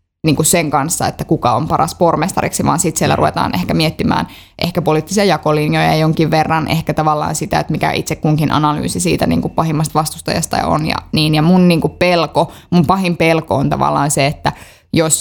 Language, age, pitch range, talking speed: Finnish, 20-39, 150-175 Hz, 190 wpm